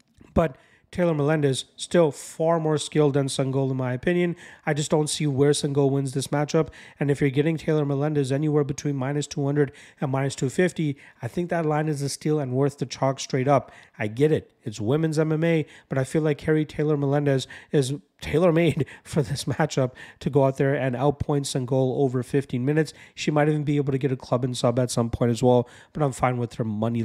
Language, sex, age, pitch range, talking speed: English, male, 40-59, 135-155 Hz, 215 wpm